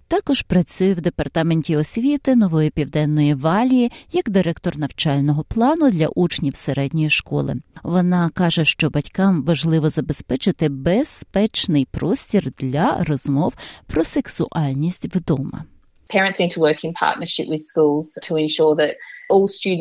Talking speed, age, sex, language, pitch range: 100 wpm, 30-49, female, Ukrainian, 155-210 Hz